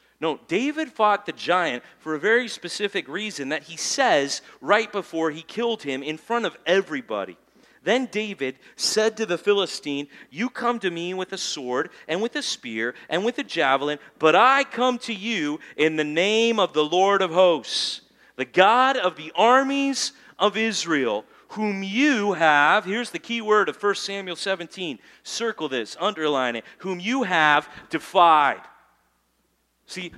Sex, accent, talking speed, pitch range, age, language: male, American, 165 wpm, 160-215 Hz, 40-59, English